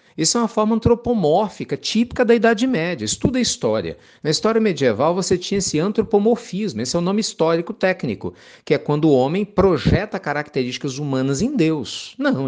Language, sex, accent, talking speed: Portuguese, male, Brazilian, 185 wpm